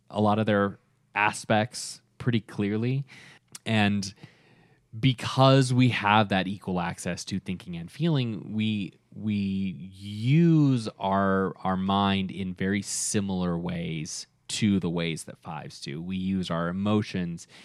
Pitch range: 95-125 Hz